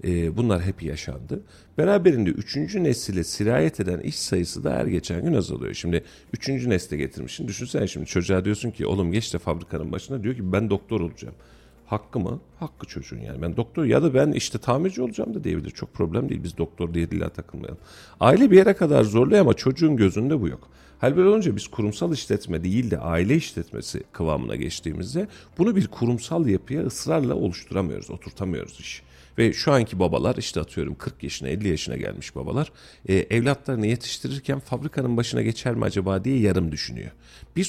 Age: 40-59